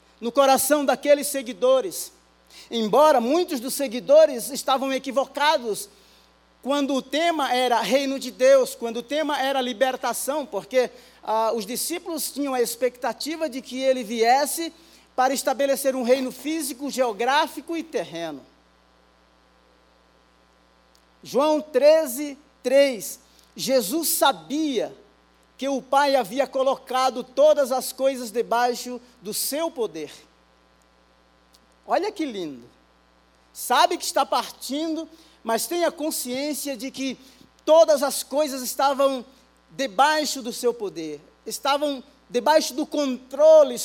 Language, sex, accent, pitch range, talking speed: Portuguese, male, Brazilian, 175-285 Hz, 110 wpm